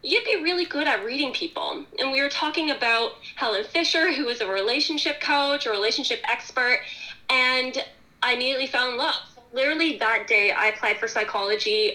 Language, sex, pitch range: English, female, 240-310 Hz